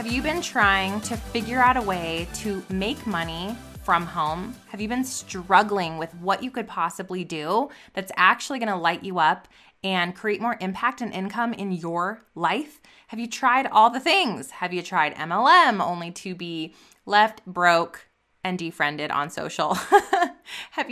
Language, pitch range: English, 185-235 Hz